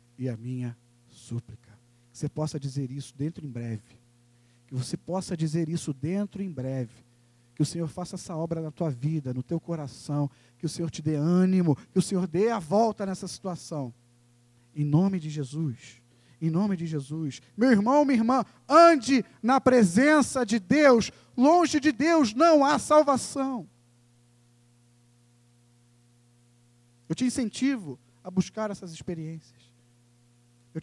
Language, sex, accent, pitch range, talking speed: Portuguese, male, Brazilian, 120-200 Hz, 150 wpm